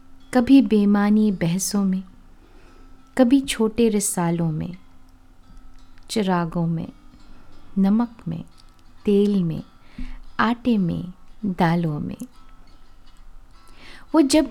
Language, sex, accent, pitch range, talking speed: Hindi, female, native, 160-225 Hz, 85 wpm